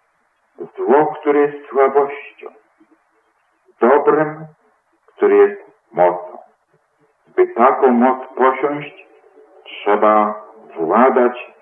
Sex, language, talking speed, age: male, Polish, 70 wpm, 50-69